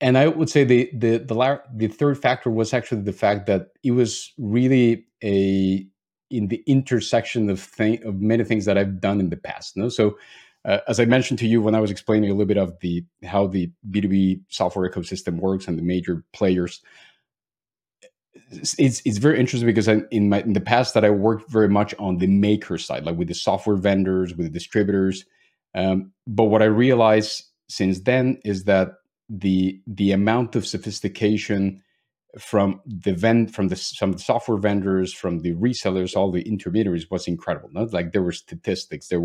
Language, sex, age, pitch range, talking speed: English, male, 40-59, 95-115 Hz, 195 wpm